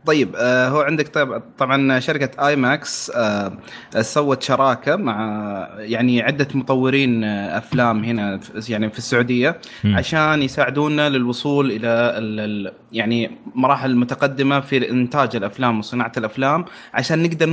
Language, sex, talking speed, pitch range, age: Arabic, male, 105 wpm, 120-145 Hz, 20-39